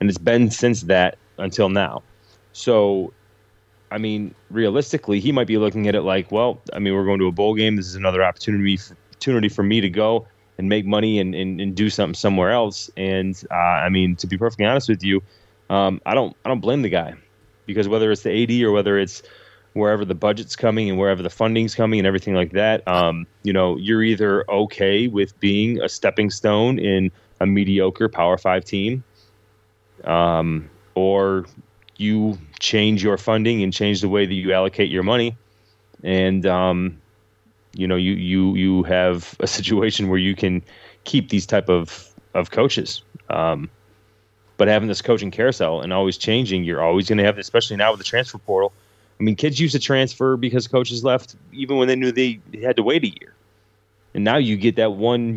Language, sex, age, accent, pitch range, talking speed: English, male, 20-39, American, 95-110 Hz, 195 wpm